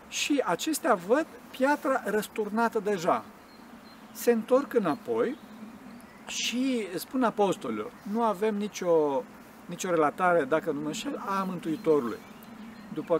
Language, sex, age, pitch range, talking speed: Romanian, male, 50-69, 165-245 Hz, 105 wpm